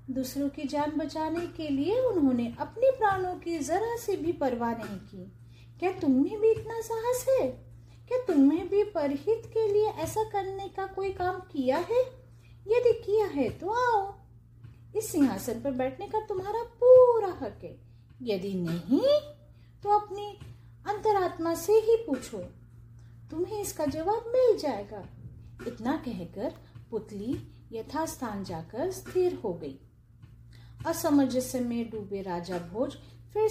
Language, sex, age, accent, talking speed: Hindi, female, 30-49, native, 110 wpm